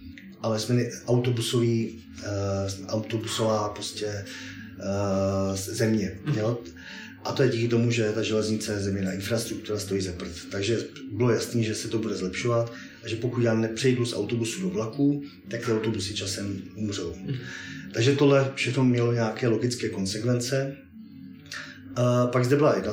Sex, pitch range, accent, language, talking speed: male, 105-120 Hz, native, Czech, 150 wpm